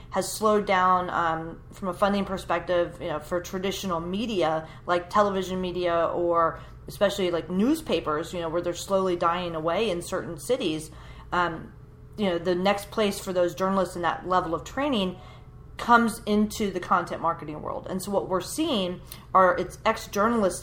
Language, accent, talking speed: English, American, 170 wpm